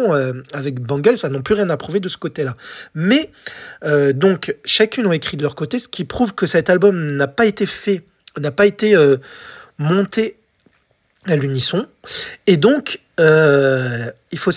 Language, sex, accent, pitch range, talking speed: French, male, French, 145-205 Hz, 175 wpm